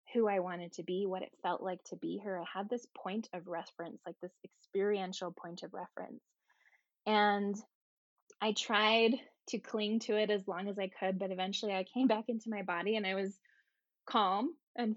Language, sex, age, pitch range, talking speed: English, female, 20-39, 185-215 Hz, 195 wpm